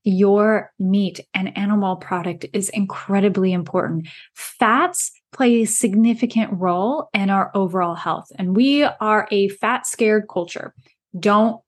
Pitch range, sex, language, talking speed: 185-220 Hz, female, English, 130 wpm